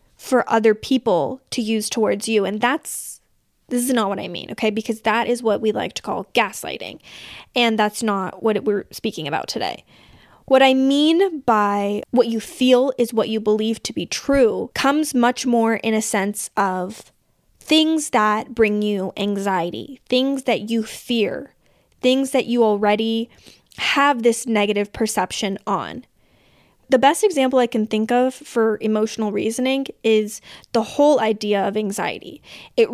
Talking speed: 160 wpm